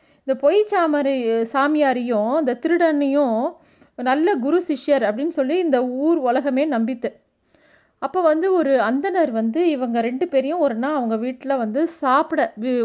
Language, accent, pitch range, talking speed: Tamil, native, 245-315 Hz, 130 wpm